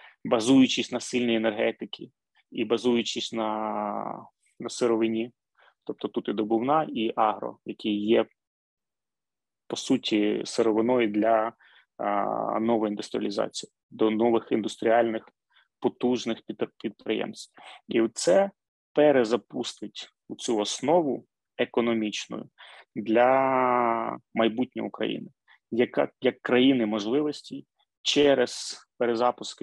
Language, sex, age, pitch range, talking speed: Ukrainian, male, 20-39, 110-125 Hz, 90 wpm